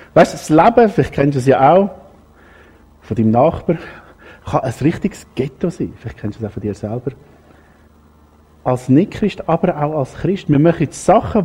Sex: male